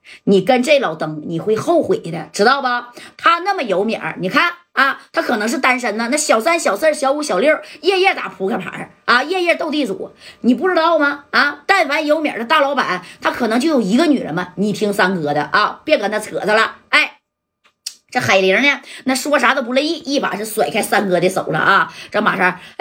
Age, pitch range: 30-49, 200-300 Hz